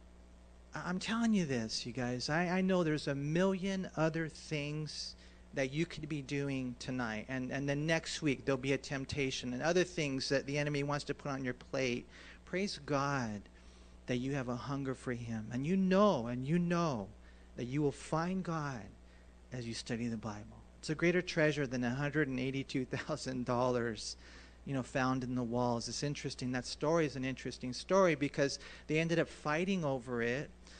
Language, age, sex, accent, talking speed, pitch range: English, 40-59, male, American, 180 wpm, 125-155 Hz